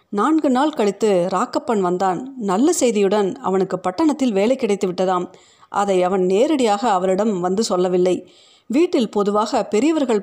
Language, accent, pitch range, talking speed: Tamil, native, 185-240 Hz, 125 wpm